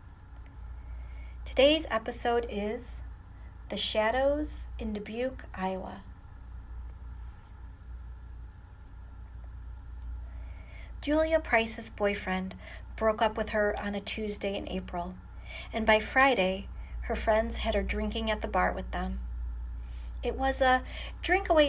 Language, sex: English, female